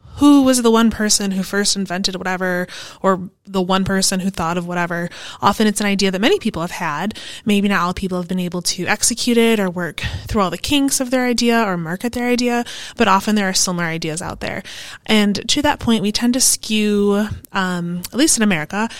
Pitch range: 180-225 Hz